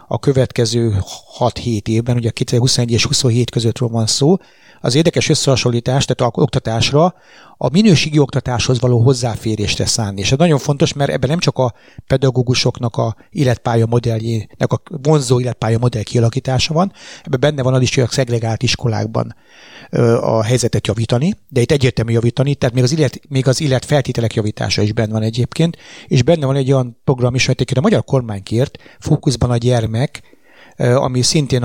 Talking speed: 165 wpm